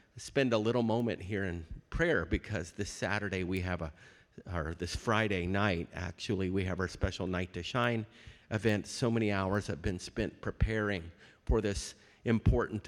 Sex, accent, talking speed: male, American, 170 wpm